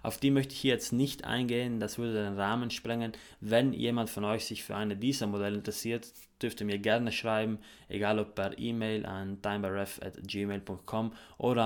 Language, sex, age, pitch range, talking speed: German, male, 20-39, 100-115 Hz, 175 wpm